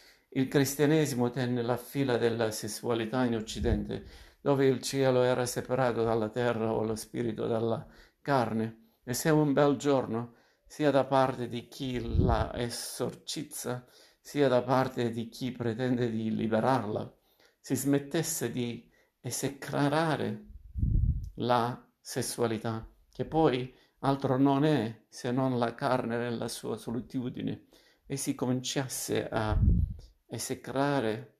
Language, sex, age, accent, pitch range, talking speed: Italian, male, 50-69, native, 115-130 Hz, 120 wpm